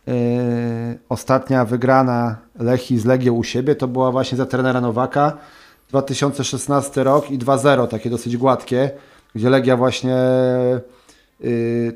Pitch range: 125-145 Hz